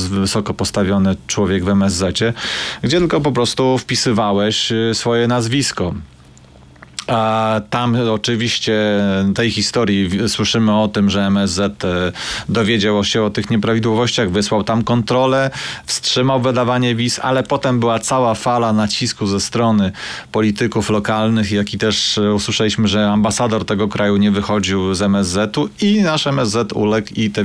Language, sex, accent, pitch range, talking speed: Polish, male, native, 100-120 Hz, 130 wpm